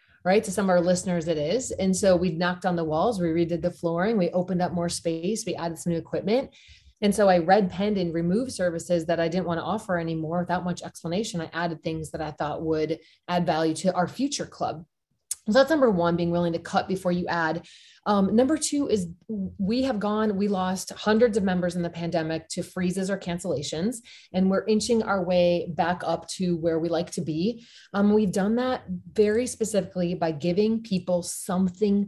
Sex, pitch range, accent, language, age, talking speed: female, 170-205 Hz, American, English, 30-49, 210 wpm